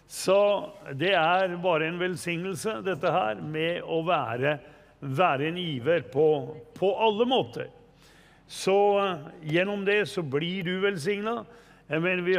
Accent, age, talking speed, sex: Swedish, 60-79, 130 wpm, male